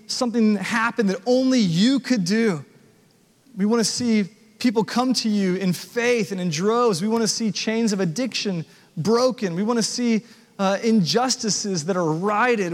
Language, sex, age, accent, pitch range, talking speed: English, male, 30-49, American, 160-215 Hz, 160 wpm